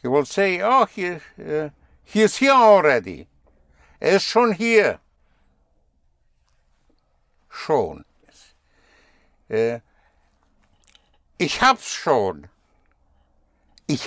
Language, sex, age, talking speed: English, male, 60-79, 85 wpm